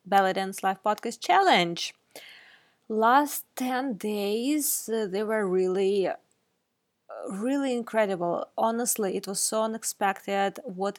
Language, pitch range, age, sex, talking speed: English, 200-245 Hz, 20-39, female, 100 wpm